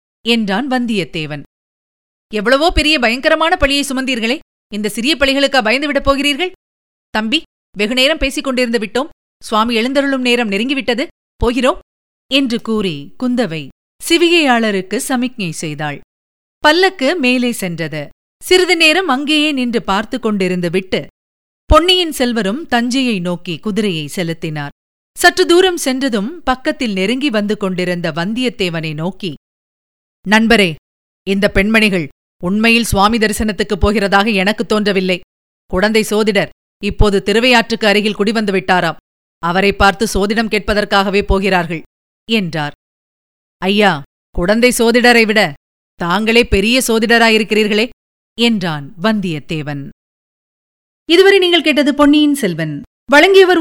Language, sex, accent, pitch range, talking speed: Tamil, female, native, 190-270 Hz, 100 wpm